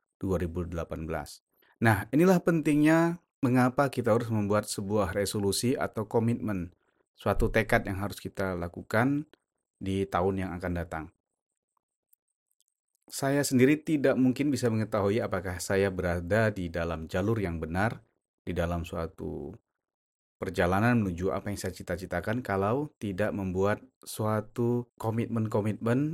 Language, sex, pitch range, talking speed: Indonesian, male, 95-120 Hz, 115 wpm